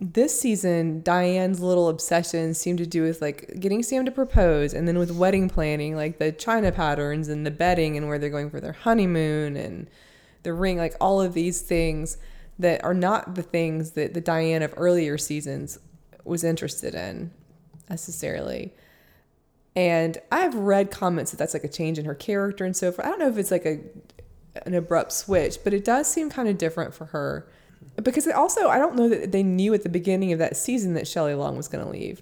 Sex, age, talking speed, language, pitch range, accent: female, 20-39, 210 wpm, English, 155-185 Hz, American